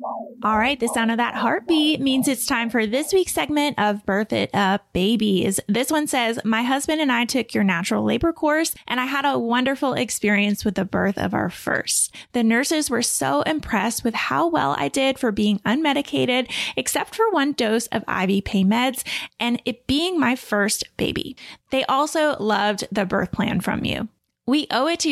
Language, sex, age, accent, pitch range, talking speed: English, female, 20-39, American, 210-285 Hz, 195 wpm